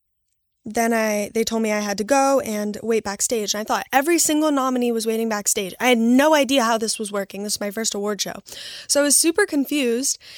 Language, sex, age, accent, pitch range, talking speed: English, female, 10-29, American, 235-295 Hz, 230 wpm